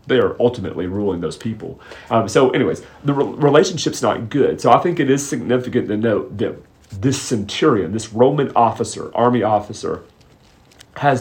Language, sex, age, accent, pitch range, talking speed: English, male, 40-59, American, 95-125 Hz, 165 wpm